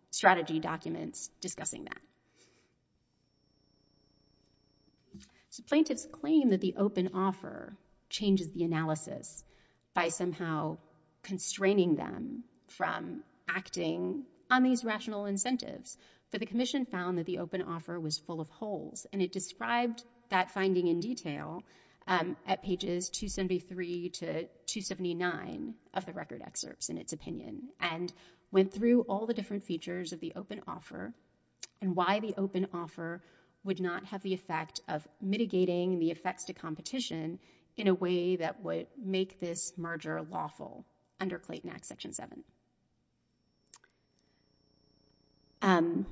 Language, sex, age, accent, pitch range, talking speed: English, female, 30-49, American, 175-205 Hz, 125 wpm